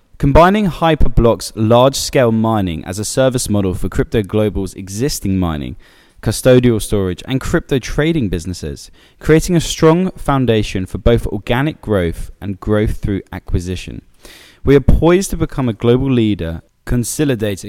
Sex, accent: male, British